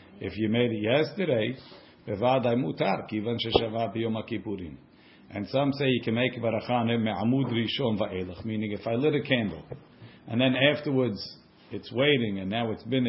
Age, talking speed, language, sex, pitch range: 50-69, 170 wpm, English, male, 105-130 Hz